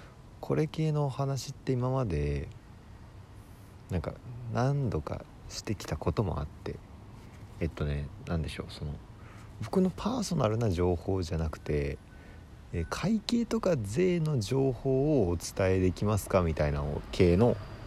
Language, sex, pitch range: Japanese, male, 80-115 Hz